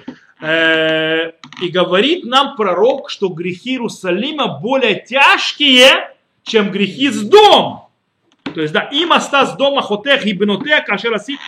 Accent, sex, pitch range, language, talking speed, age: native, male, 165-265 Hz, Russian, 130 wpm, 30-49